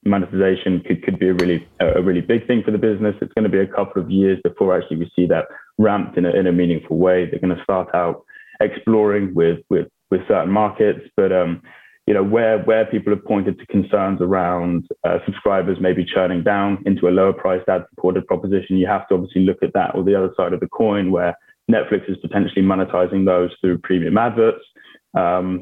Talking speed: 215 wpm